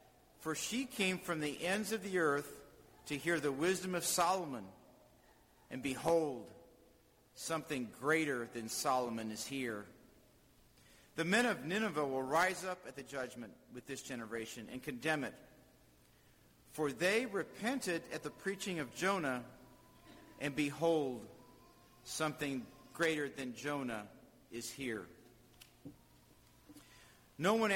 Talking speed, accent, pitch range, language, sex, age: 125 wpm, American, 125-170 Hz, English, male, 50-69